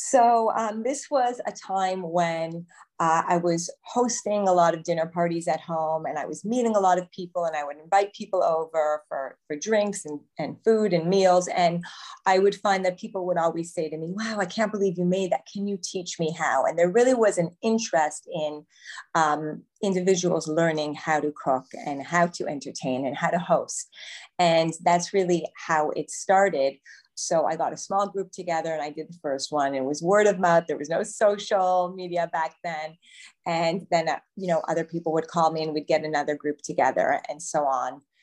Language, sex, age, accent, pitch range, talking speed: English, female, 30-49, American, 160-195 Hz, 210 wpm